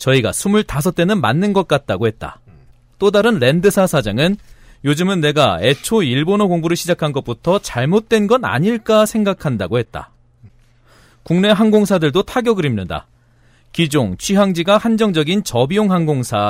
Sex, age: male, 40-59